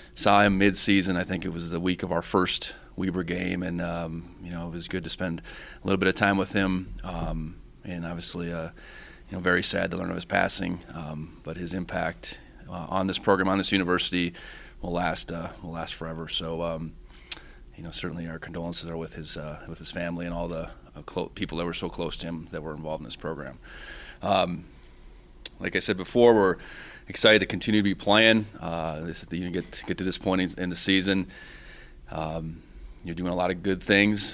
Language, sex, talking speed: English, male, 215 wpm